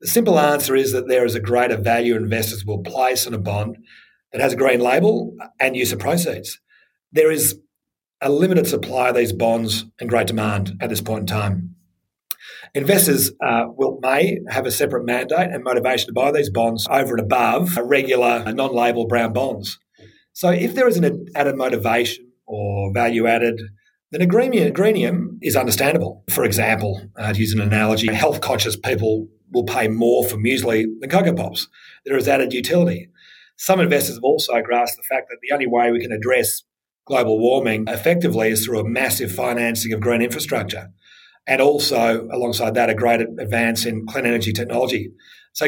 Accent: Australian